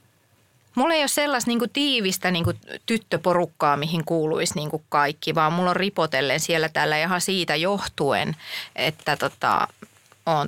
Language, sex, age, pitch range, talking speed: Finnish, female, 30-49, 155-220 Hz, 135 wpm